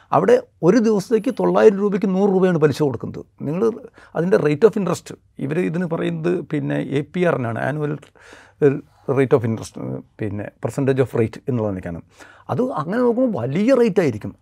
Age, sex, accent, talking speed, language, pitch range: 60-79, male, native, 155 wpm, Malayalam, 150-225 Hz